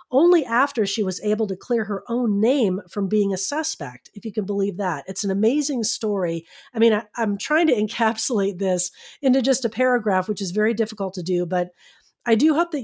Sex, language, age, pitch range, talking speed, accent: female, English, 40-59, 175-230 Hz, 210 wpm, American